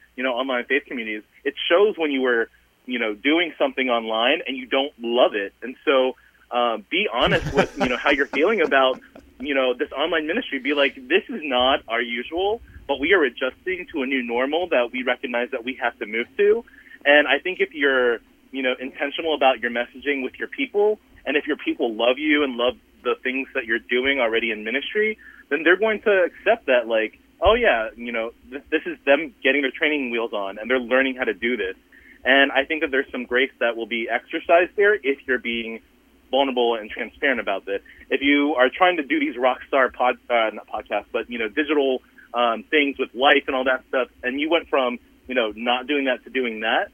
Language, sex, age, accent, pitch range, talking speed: English, male, 30-49, American, 120-155 Hz, 220 wpm